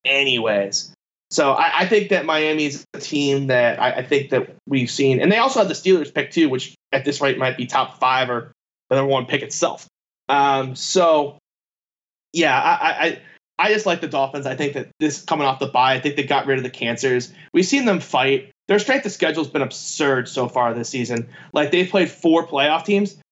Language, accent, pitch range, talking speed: English, American, 140-180 Hz, 215 wpm